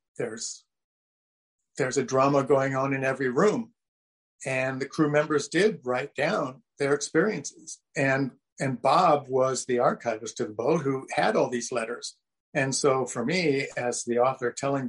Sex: male